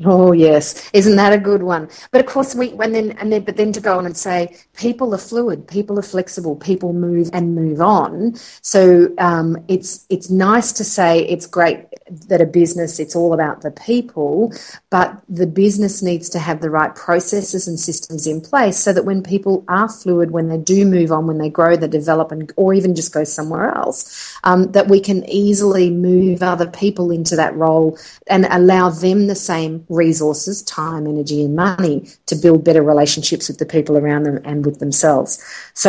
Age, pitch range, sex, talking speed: 40-59, 160-195 Hz, female, 200 wpm